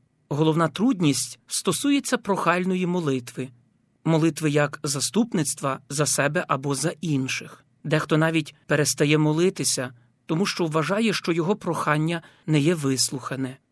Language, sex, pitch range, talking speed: Ukrainian, male, 140-185 Hz, 115 wpm